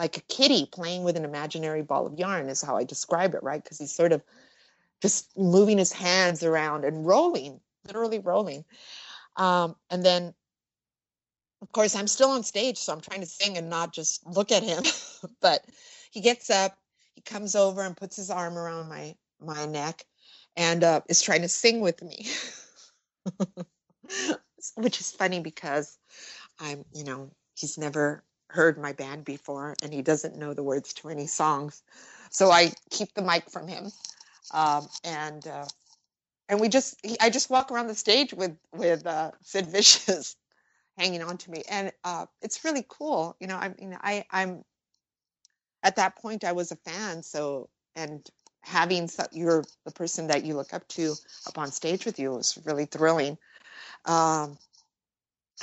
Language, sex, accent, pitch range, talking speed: English, female, American, 155-200 Hz, 180 wpm